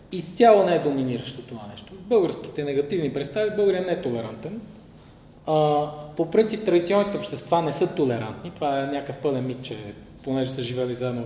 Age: 20-39